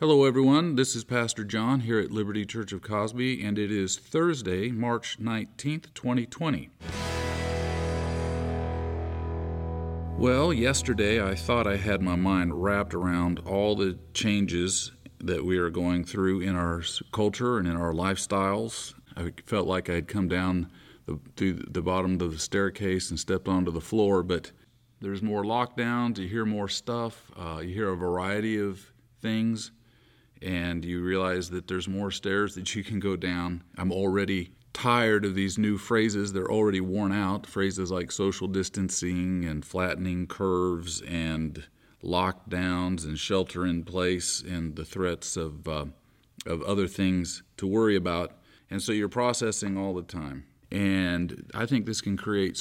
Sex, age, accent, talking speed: male, 40-59, American, 155 wpm